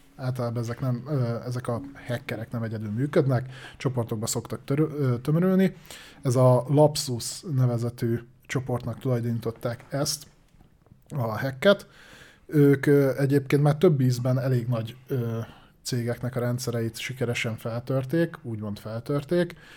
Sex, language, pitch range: male, Hungarian, 120-145 Hz